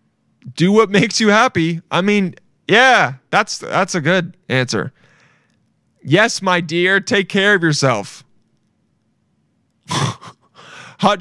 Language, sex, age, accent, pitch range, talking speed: English, male, 20-39, American, 125-175 Hz, 110 wpm